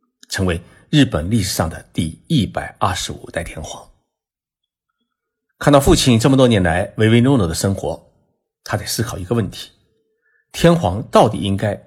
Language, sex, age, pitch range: Chinese, male, 50-69, 90-125 Hz